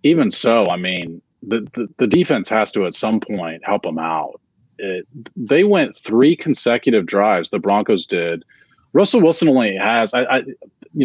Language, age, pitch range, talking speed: English, 30-49, 105-135 Hz, 175 wpm